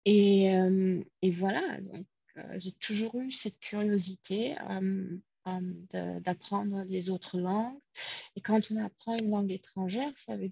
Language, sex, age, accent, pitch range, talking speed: French, female, 30-49, French, 175-205 Hz, 145 wpm